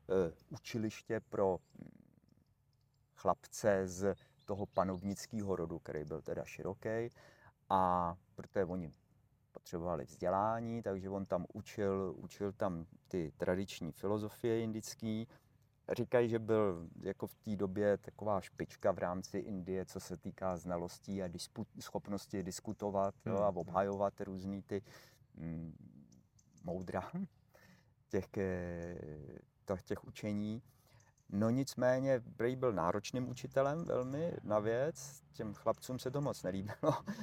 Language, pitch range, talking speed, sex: Czech, 95-130 Hz, 115 wpm, male